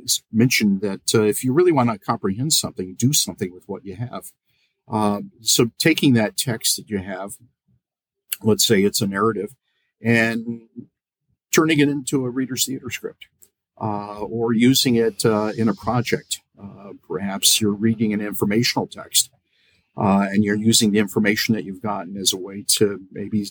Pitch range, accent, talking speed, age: 105-125 Hz, American, 170 wpm, 50-69